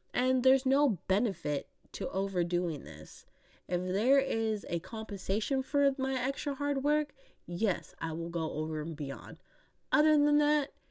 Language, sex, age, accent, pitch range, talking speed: English, female, 20-39, American, 175-255 Hz, 150 wpm